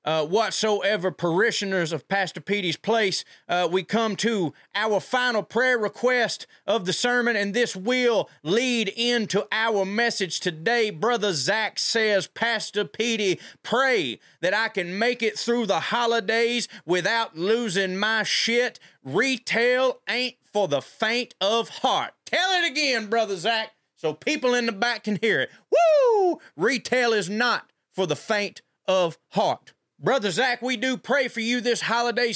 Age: 30-49